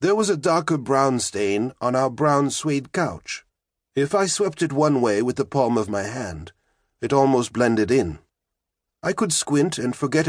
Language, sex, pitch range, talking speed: English, male, 120-200 Hz, 185 wpm